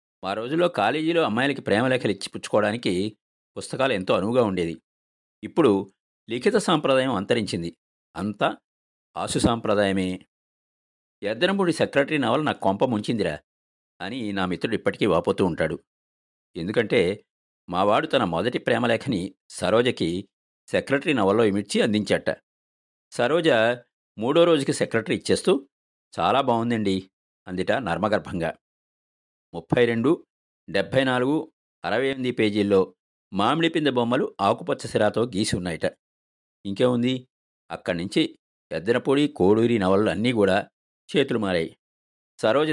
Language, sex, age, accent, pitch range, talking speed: Telugu, male, 50-69, native, 85-135 Hz, 100 wpm